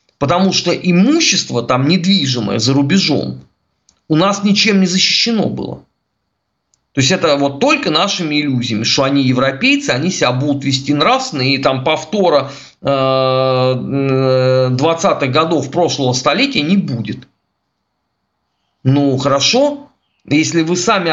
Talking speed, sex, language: 120 wpm, male, Russian